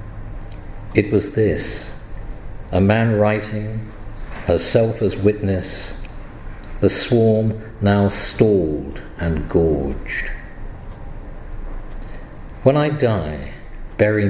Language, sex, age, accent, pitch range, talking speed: English, male, 50-69, British, 95-110 Hz, 80 wpm